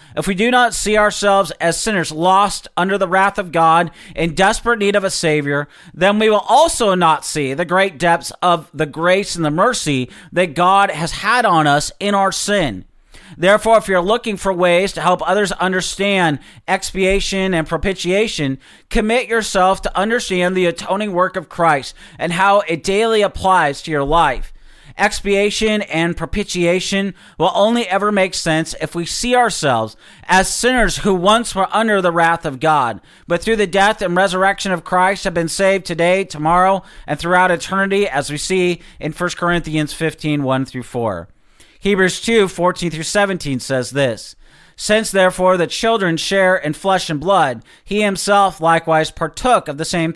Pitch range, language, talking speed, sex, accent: 160-200 Hz, English, 170 wpm, male, American